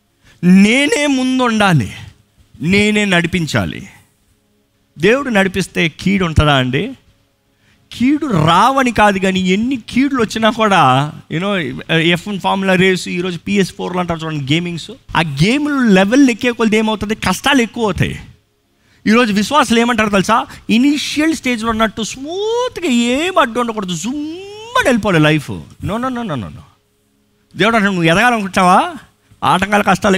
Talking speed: 115 wpm